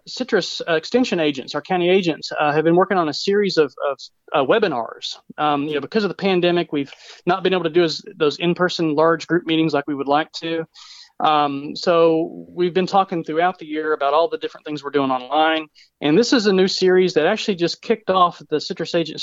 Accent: American